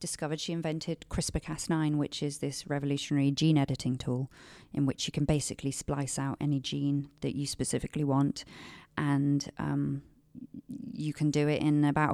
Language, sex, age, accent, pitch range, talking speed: English, female, 30-49, British, 140-170 Hz, 160 wpm